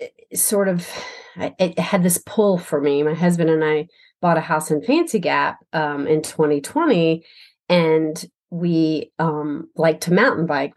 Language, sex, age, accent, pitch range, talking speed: English, female, 30-49, American, 160-200 Hz, 155 wpm